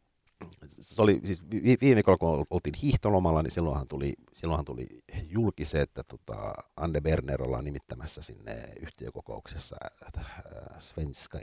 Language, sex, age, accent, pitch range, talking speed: Finnish, male, 50-69, native, 70-90 Hz, 120 wpm